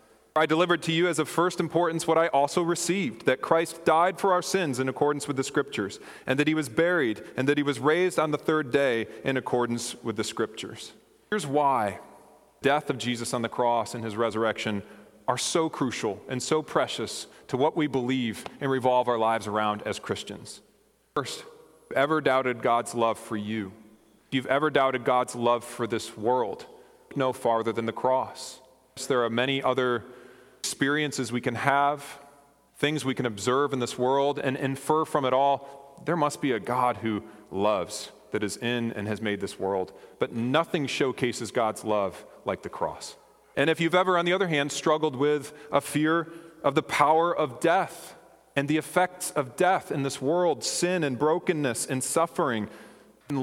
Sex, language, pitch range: male, English, 120-155 Hz